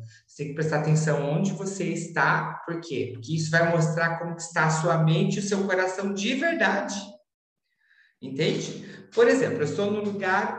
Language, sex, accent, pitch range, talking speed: Portuguese, male, Brazilian, 120-185 Hz, 180 wpm